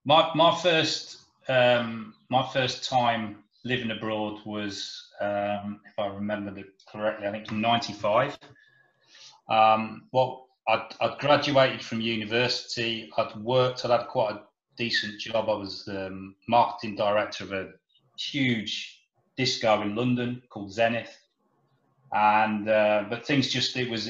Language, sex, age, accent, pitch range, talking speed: English, male, 30-49, British, 100-120 Hz, 135 wpm